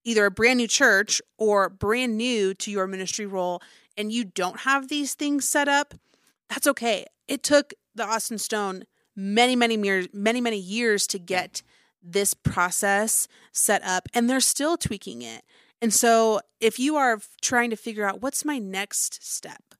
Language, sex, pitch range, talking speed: English, female, 195-240 Hz, 175 wpm